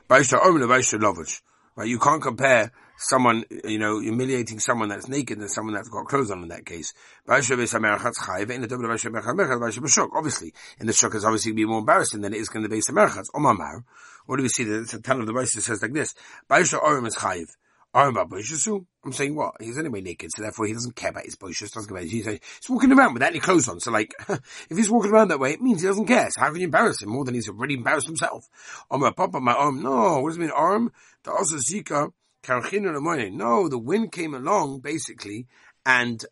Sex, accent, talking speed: male, British, 235 wpm